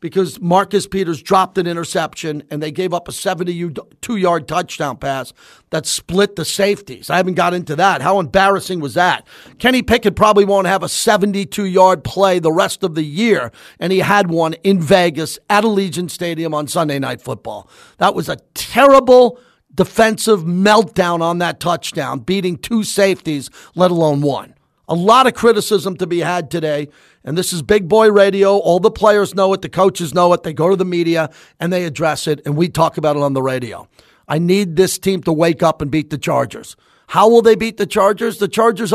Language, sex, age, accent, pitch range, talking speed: English, male, 50-69, American, 165-205 Hz, 195 wpm